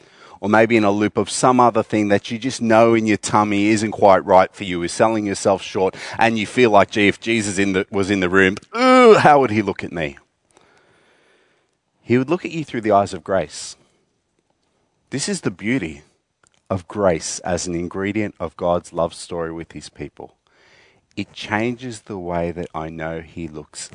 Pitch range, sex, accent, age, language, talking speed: 85-110 Hz, male, Australian, 30-49, English, 195 wpm